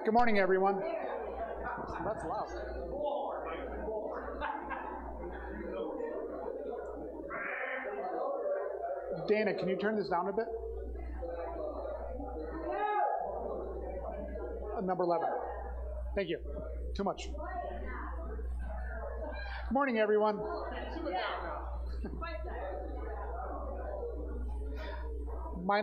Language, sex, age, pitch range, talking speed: English, male, 30-49, 140-185 Hz, 55 wpm